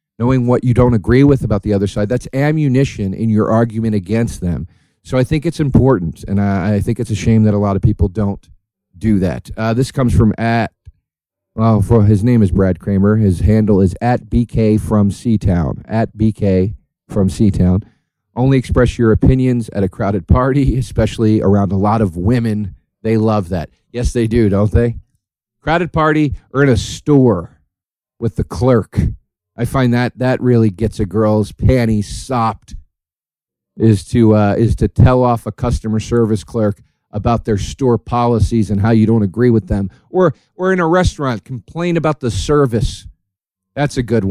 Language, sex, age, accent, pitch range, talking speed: English, male, 40-59, American, 100-125 Hz, 185 wpm